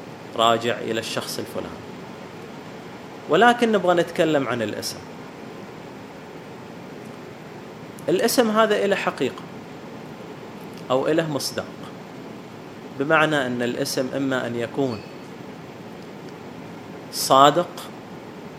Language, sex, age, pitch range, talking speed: Arabic, male, 30-49, 130-165 Hz, 75 wpm